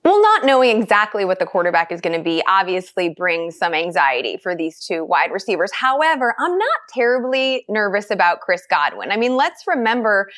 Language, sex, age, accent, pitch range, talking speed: English, female, 20-39, American, 210-265 Hz, 185 wpm